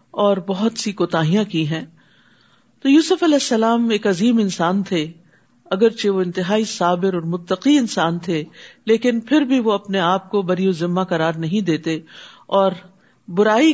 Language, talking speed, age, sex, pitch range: Urdu, 160 wpm, 50-69, female, 175-230 Hz